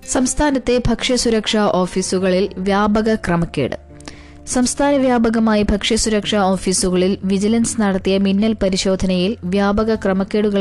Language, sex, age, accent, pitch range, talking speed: Malayalam, female, 20-39, native, 190-215 Hz, 85 wpm